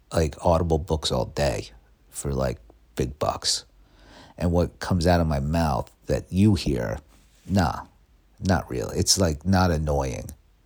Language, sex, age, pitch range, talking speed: English, male, 50-69, 75-95 Hz, 145 wpm